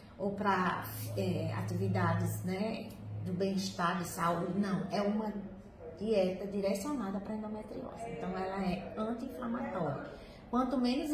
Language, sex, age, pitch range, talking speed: Portuguese, female, 20-39, 190-235 Hz, 115 wpm